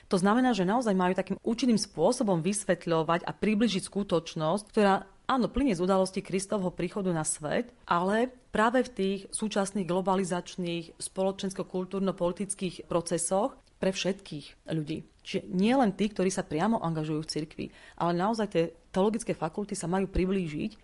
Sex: female